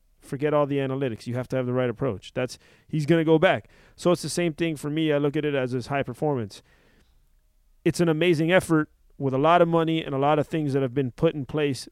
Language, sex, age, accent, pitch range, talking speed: English, male, 30-49, American, 140-175 Hz, 255 wpm